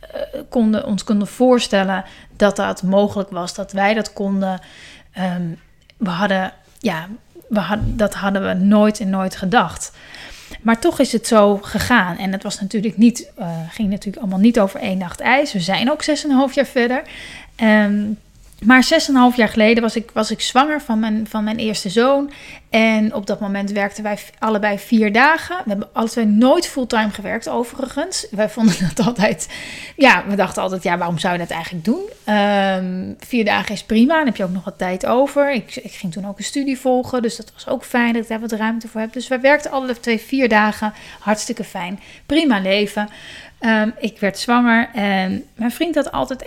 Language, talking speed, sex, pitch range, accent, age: Dutch, 200 wpm, female, 200-245 Hz, Dutch, 30-49